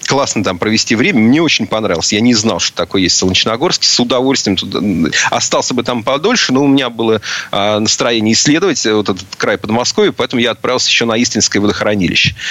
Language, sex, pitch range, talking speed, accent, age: Russian, male, 100-120 Hz, 180 wpm, native, 30-49